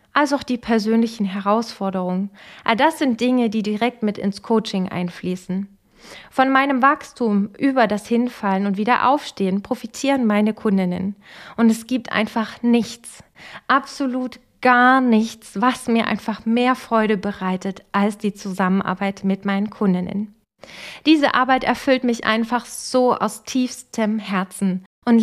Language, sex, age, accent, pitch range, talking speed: German, female, 20-39, German, 200-255 Hz, 135 wpm